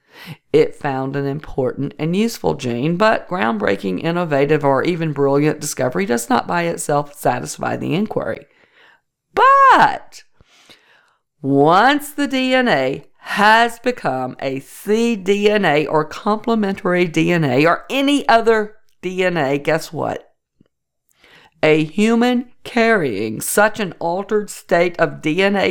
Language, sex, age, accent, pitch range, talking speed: English, female, 50-69, American, 150-225 Hz, 110 wpm